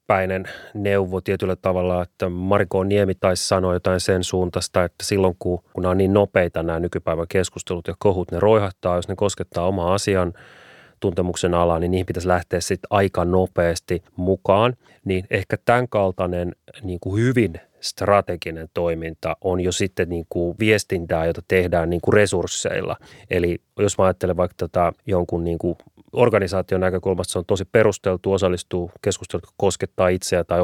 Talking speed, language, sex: 160 wpm, Finnish, male